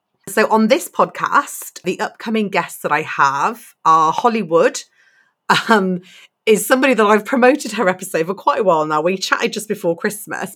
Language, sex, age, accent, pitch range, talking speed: English, female, 30-49, British, 165-210 Hz, 170 wpm